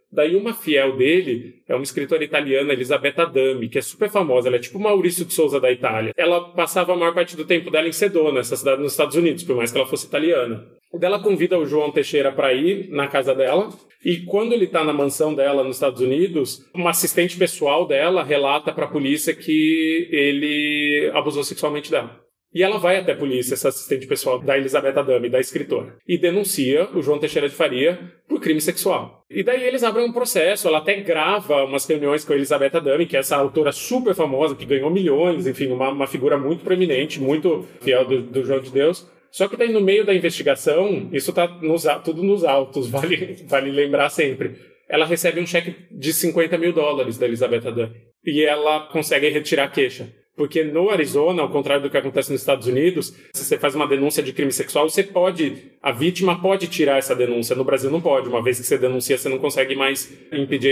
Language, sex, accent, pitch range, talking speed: Portuguese, male, Brazilian, 140-180 Hz, 210 wpm